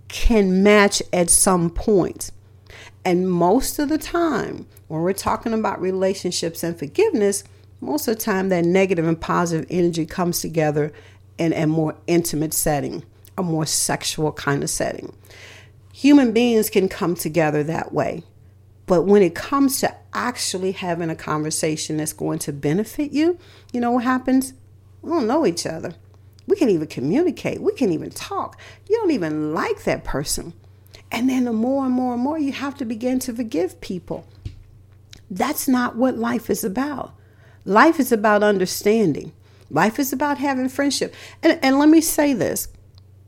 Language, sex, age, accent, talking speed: English, female, 50-69, American, 165 wpm